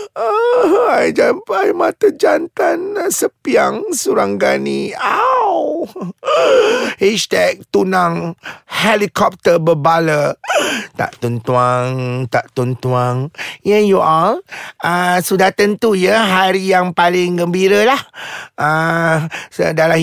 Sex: male